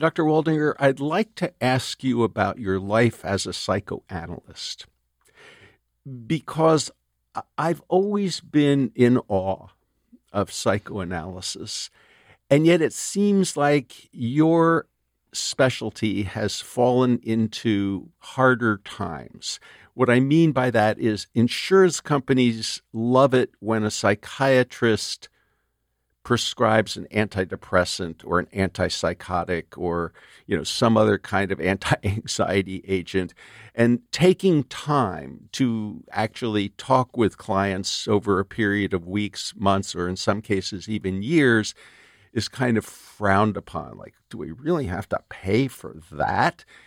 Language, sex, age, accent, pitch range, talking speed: English, male, 50-69, American, 95-130 Hz, 120 wpm